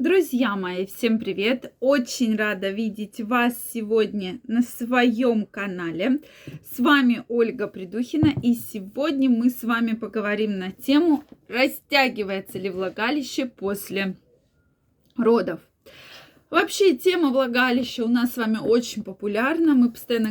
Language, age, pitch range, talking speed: Russian, 20-39, 210-270 Hz, 120 wpm